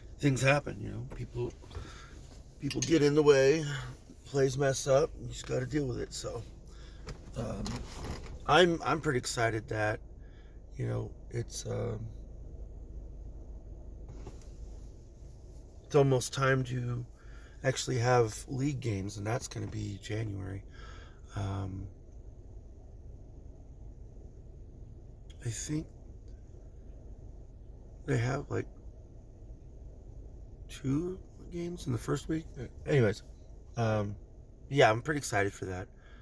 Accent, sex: American, male